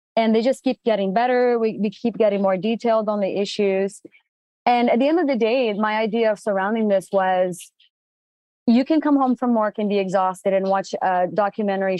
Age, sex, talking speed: 30-49, female, 205 wpm